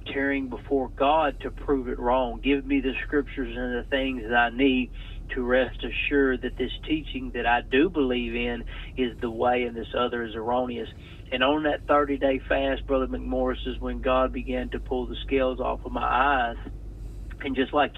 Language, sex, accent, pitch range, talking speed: English, male, American, 120-140 Hz, 195 wpm